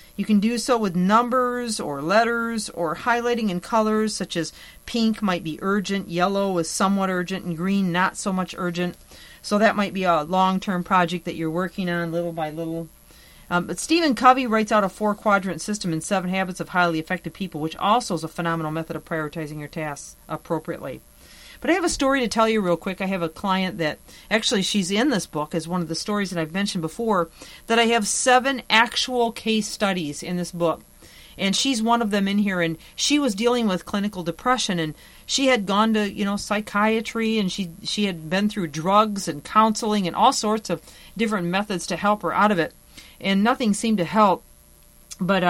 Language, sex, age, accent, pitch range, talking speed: English, female, 40-59, American, 170-215 Hz, 205 wpm